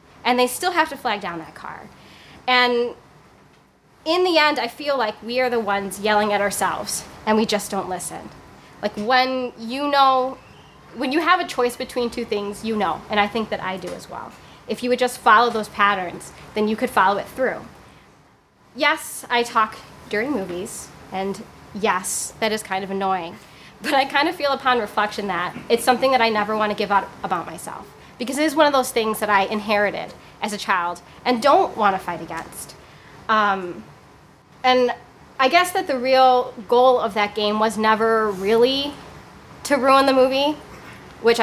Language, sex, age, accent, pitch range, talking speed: English, female, 20-39, American, 200-255 Hz, 190 wpm